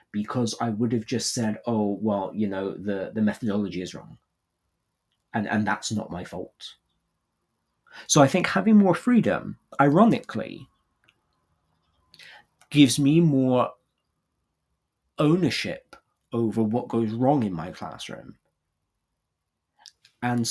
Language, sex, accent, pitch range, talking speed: English, male, British, 105-130 Hz, 115 wpm